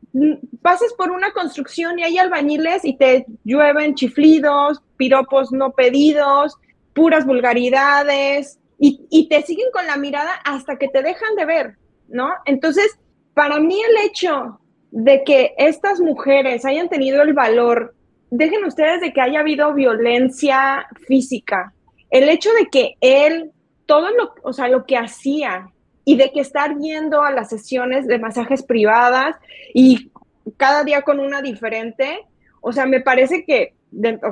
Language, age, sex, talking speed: Spanish, 20-39, female, 150 wpm